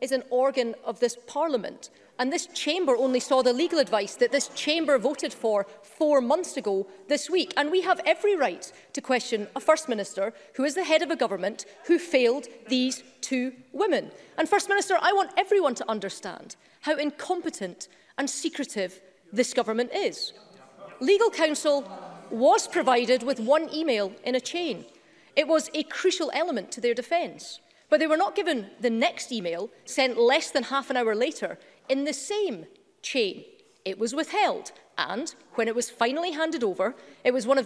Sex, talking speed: female, 180 wpm